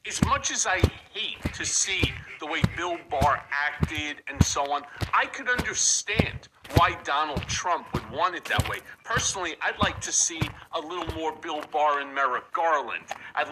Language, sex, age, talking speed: English, male, 50-69, 180 wpm